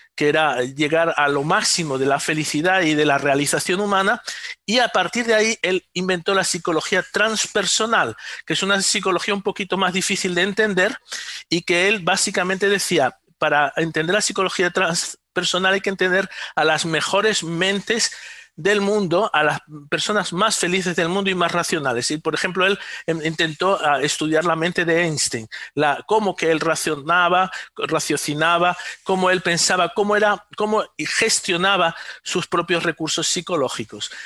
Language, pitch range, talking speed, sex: Spanish, 155-200 Hz, 160 wpm, male